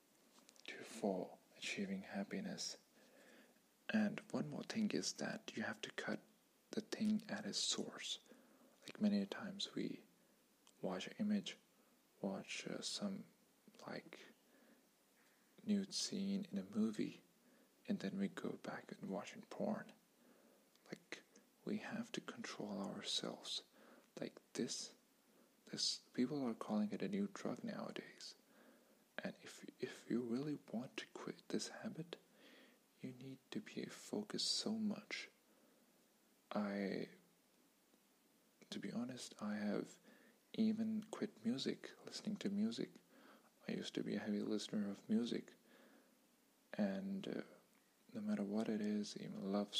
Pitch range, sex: 200-235 Hz, male